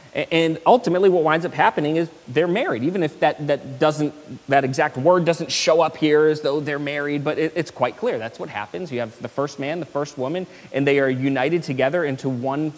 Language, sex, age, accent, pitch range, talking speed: English, male, 30-49, American, 135-160 Hz, 225 wpm